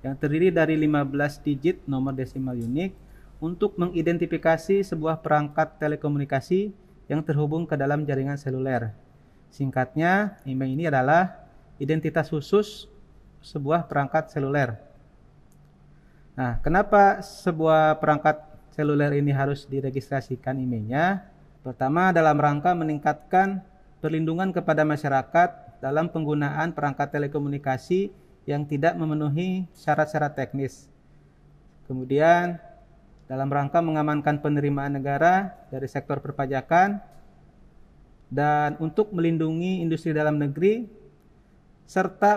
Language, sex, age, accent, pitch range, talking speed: Indonesian, male, 30-49, native, 140-170 Hz, 100 wpm